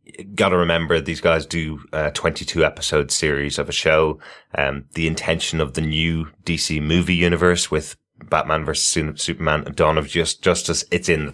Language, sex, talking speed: English, male, 180 wpm